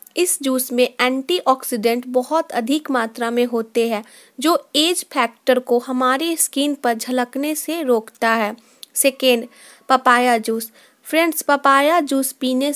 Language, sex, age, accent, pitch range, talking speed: Hindi, female, 20-39, native, 245-290 Hz, 130 wpm